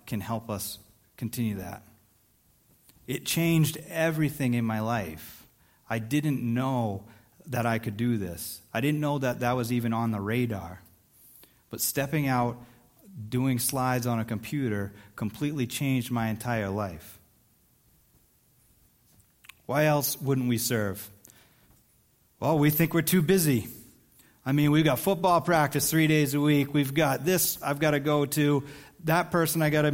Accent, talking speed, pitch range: American, 150 wpm, 120-155 Hz